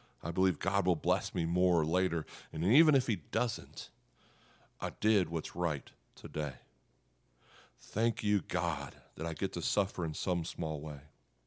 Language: English